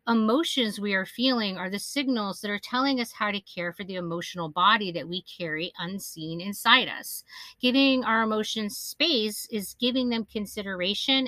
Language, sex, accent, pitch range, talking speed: English, female, American, 175-245 Hz, 170 wpm